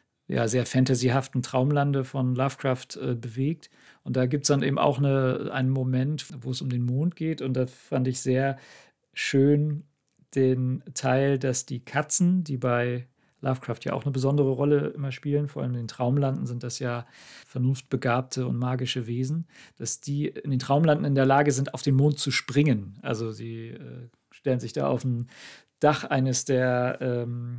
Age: 40-59